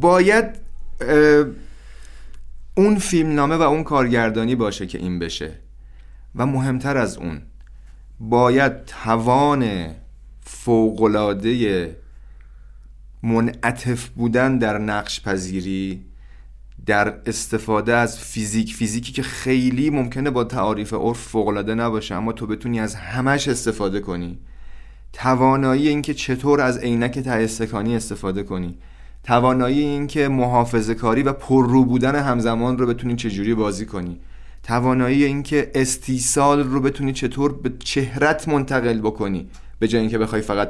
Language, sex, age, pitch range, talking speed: Persian, male, 30-49, 95-130 Hz, 120 wpm